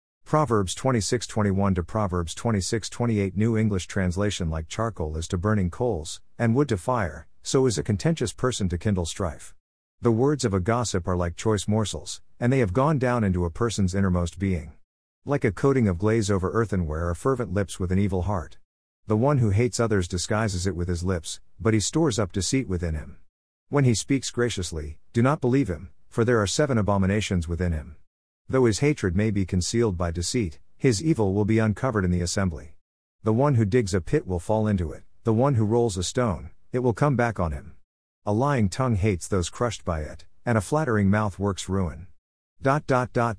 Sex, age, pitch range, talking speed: male, 50-69, 90-115 Hz, 200 wpm